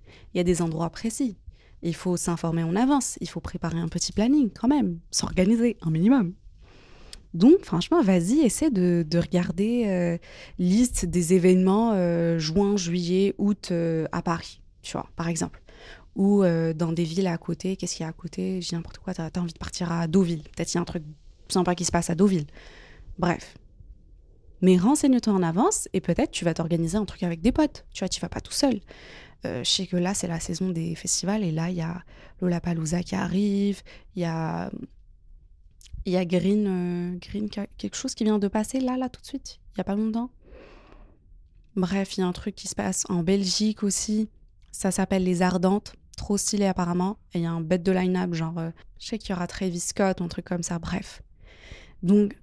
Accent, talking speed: French, 210 wpm